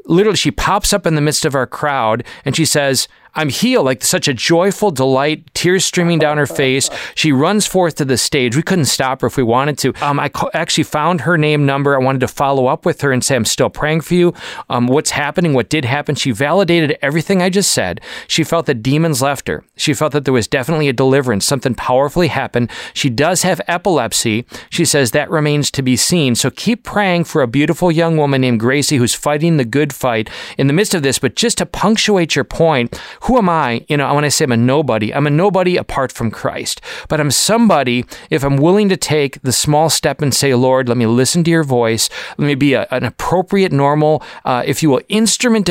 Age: 40-59